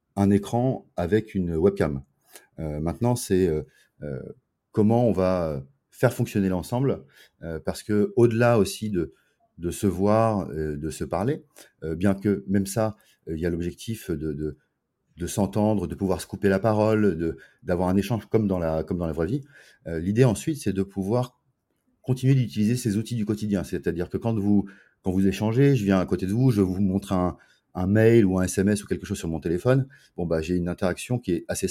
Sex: male